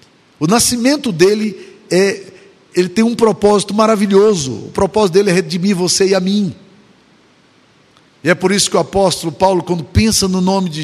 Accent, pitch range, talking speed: Brazilian, 165-205 Hz, 170 wpm